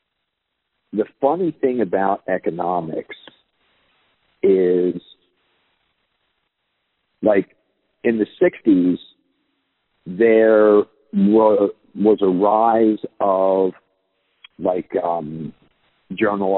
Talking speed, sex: 65 wpm, male